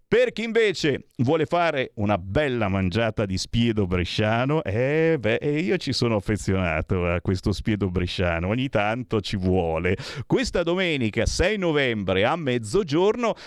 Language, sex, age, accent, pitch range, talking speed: Italian, male, 50-69, native, 105-155 Hz, 140 wpm